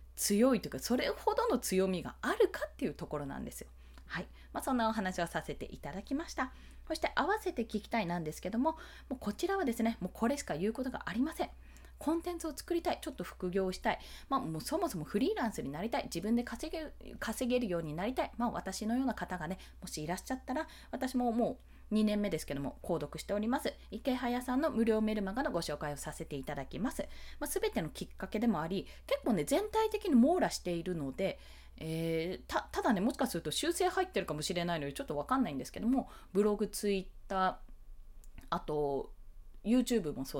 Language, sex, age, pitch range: Japanese, female, 20-39, 180-270 Hz